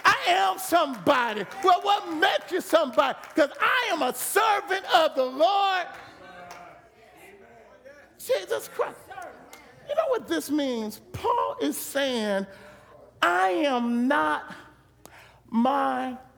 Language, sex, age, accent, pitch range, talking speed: English, male, 40-59, American, 260-360 Hz, 105 wpm